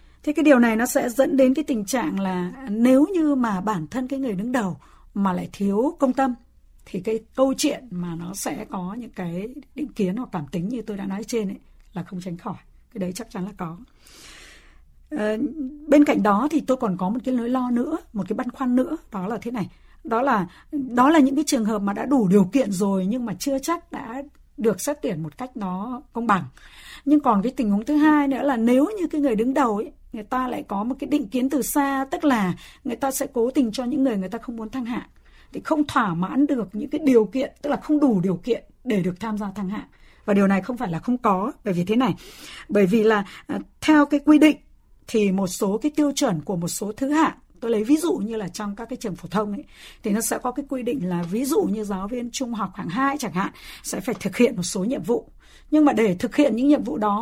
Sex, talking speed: female, 260 wpm